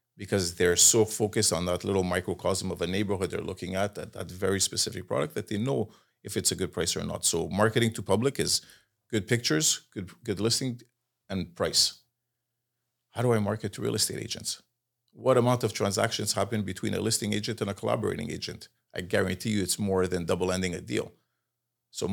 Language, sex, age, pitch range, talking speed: French, male, 40-59, 95-115 Hz, 200 wpm